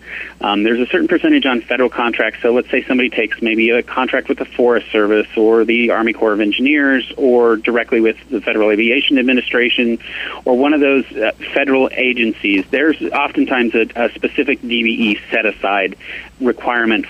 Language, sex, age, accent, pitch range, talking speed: English, male, 30-49, American, 115-160 Hz, 170 wpm